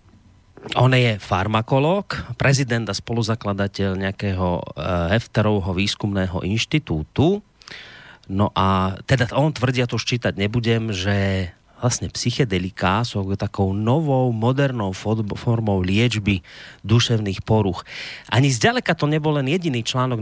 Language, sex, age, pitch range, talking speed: Slovak, male, 30-49, 100-130 Hz, 110 wpm